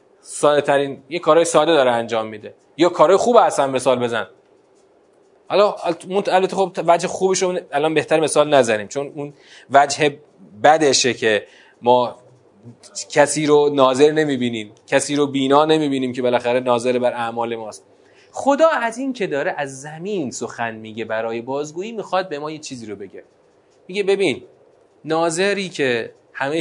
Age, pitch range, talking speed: 30-49, 135-225 Hz, 140 wpm